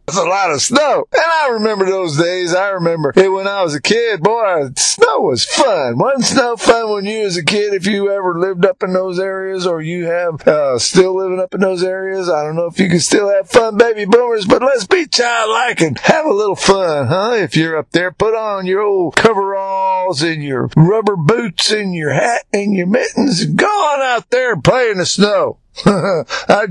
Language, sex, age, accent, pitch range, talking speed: English, male, 50-69, American, 160-210 Hz, 220 wpm